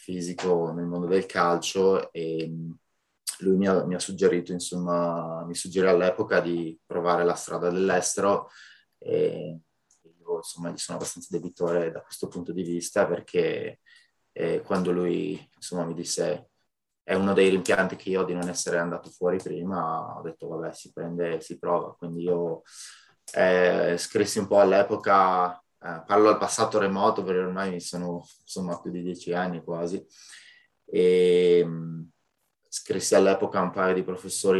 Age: 20-39